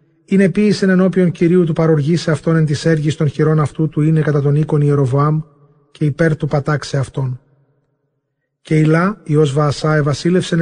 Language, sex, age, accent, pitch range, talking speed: English, male, 30-49, Greek, 145-165 Hz, 185 wpm